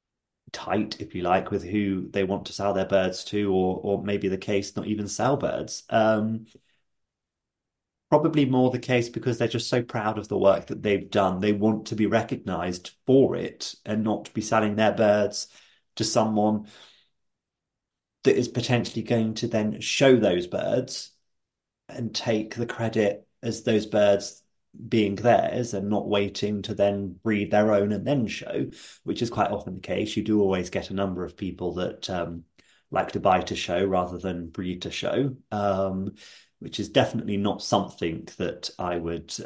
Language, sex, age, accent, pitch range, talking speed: English, male, 30-49, British, 95-110 Hz, 180 wpm